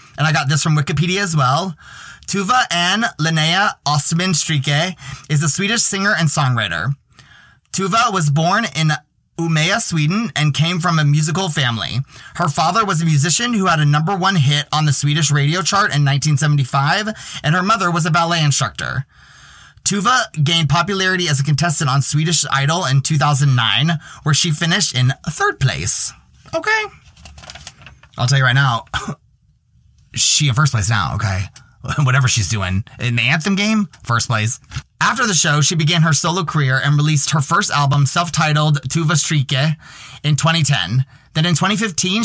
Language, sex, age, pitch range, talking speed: English, male, 20-39, 140-175 Hz, 165 wpm